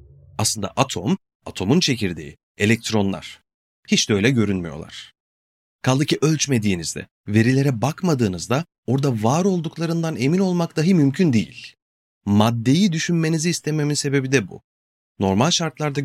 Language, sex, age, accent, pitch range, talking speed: Turkish, male, 30-49, native, 100-150 Hz, 110 wpm